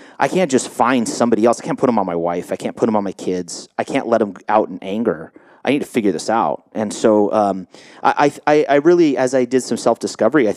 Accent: American